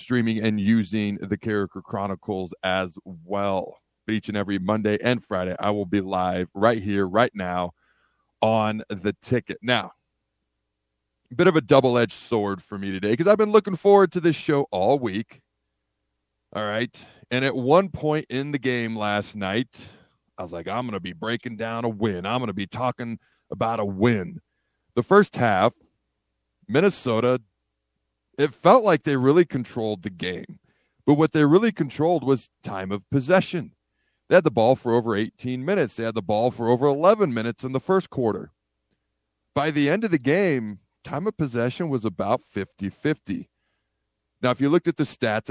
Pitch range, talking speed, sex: 100-130 Hz, 180 wpm, male